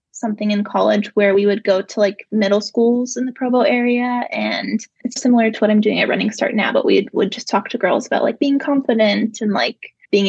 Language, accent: English, American